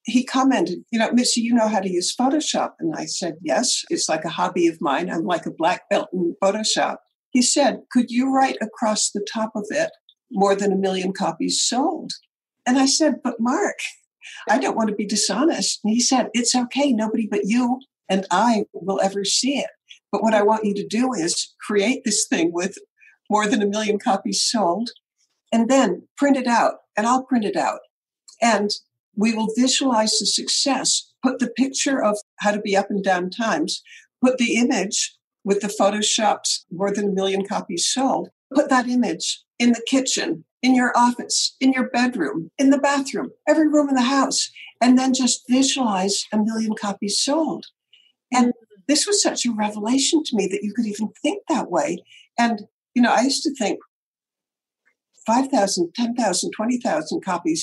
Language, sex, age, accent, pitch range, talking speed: English, female, 60-79, American, 210-265 Hz, 190 wpm